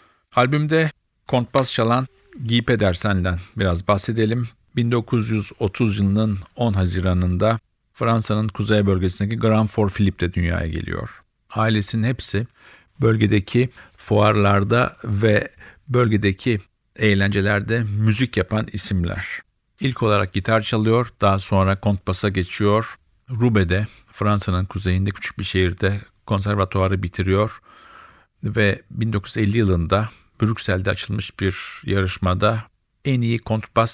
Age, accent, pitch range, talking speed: 50-69, native, 95-115 Hz, 100 wpm